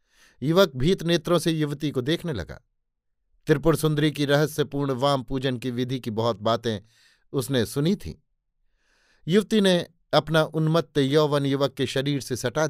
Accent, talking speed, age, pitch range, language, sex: native, 150 wpm, 50-69, 125-155 Hz, Hindi, male